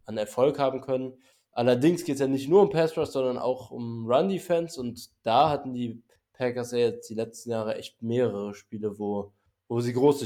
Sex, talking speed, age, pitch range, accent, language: male, 195 wpm, 20-39, 115-135 Hz, German, German